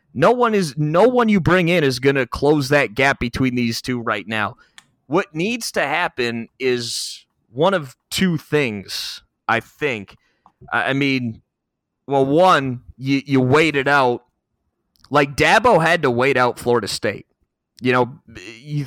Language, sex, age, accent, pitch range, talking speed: English, male, 30-49, American, 120-150 Hz, 160 wpm